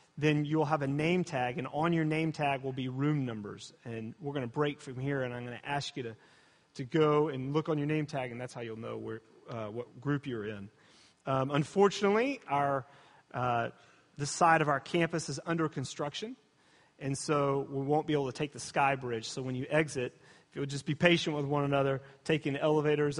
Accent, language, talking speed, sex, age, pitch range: American, English, 220 wpm, male, 30-49, 135-170 Hz